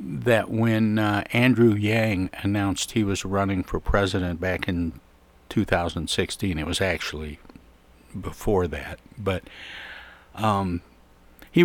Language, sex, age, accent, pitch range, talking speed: English, male, 60-79, American, 90-115 Hz, 115 wpm